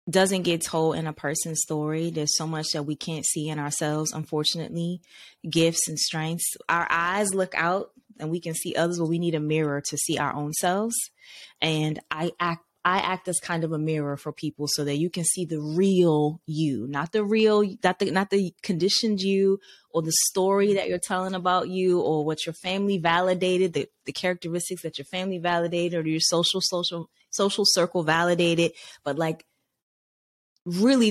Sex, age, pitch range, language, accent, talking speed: female, 20-39, 155-185 Hz, English, American, 190 wpm